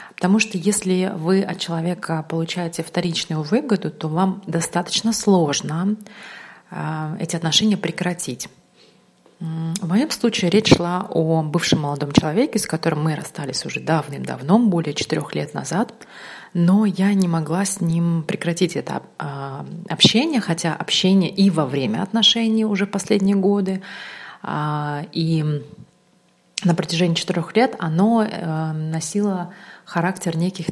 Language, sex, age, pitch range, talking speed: Russian, female, 30-49, 160-195 Hz, 130 wpm